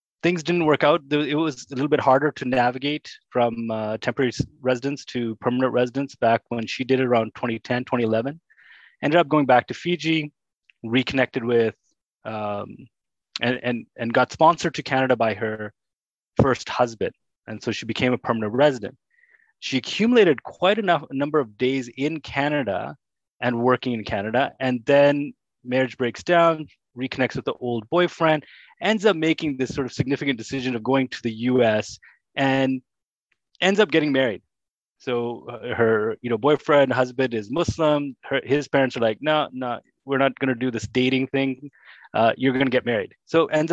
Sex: male